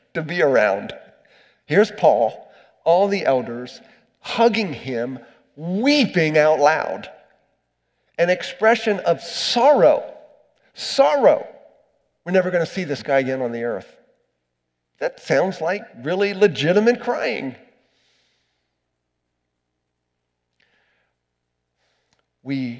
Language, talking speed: English, 90 wpm